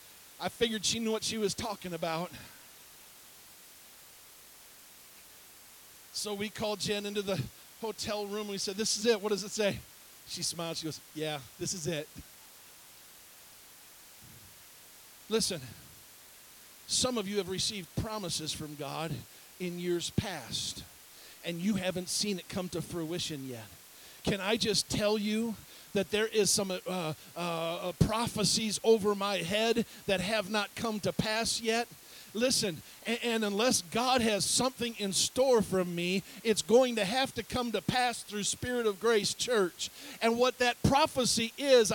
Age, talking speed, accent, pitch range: 40-59, 150 wpm, American, 185-235 Hz